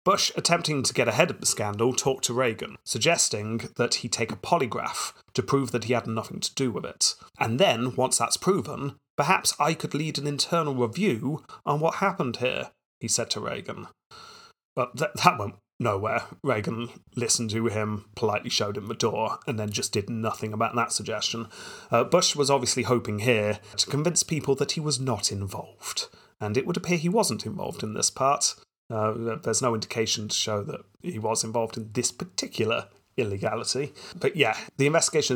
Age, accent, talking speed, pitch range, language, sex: 30-49, British, 185 wpm, 115-150 Hz, English, male